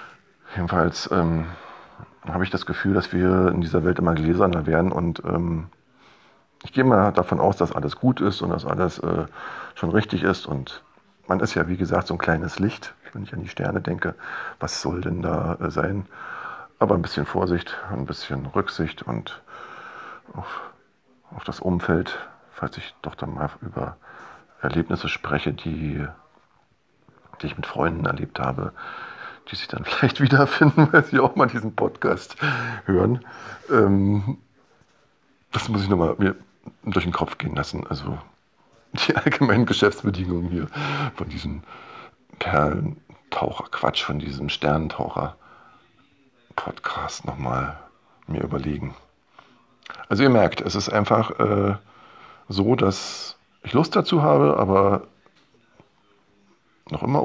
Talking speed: 145 wpm